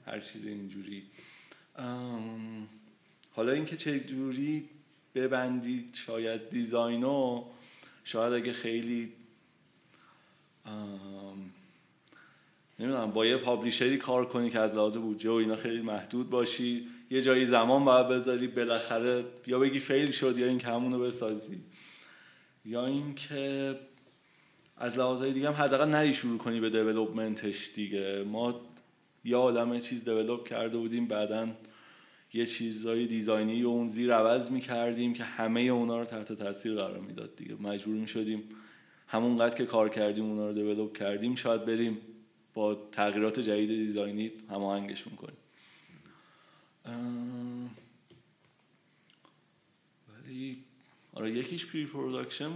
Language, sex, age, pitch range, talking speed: Persian, male, 30-49, 110-125 Hz, 120 wpm